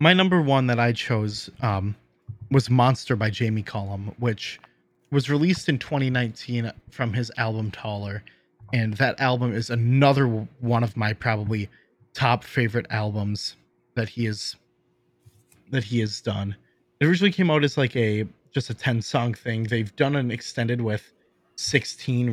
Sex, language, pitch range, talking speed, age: male, English, 105-125 Hz, 155 wpm, 30-49